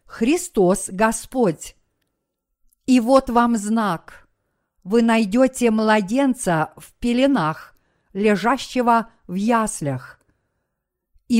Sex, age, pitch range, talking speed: female, 50-69, 200-250 Hz, 80 wpm